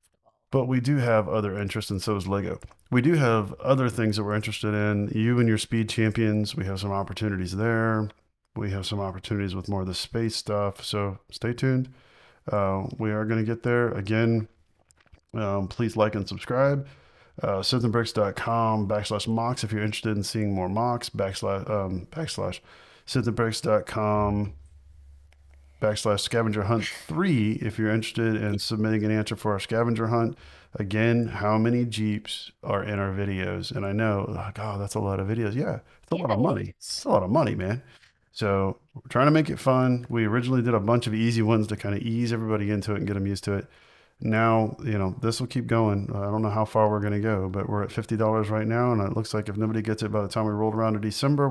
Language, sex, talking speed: English, male, 210 wpm